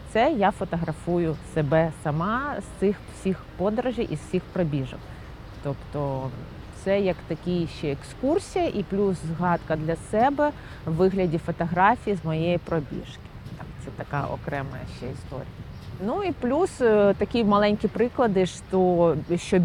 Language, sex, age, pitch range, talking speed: Ukrainian, female, 30-49, 165-205 Hz, 135 wpm